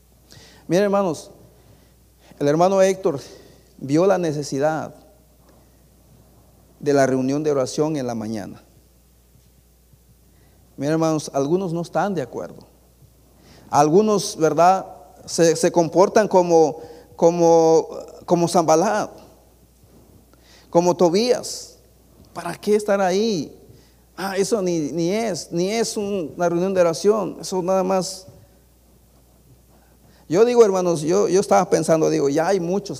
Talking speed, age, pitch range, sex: 115 wpm, 50-69, 135-185 Hz, male